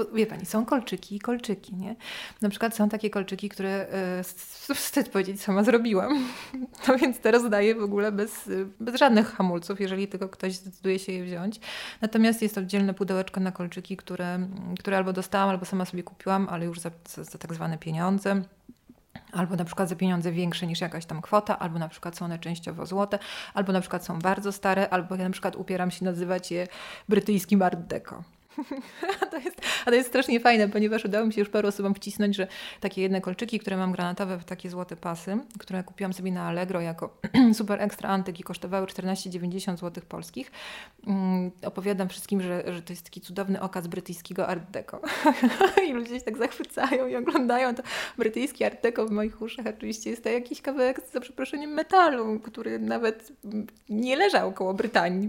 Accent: native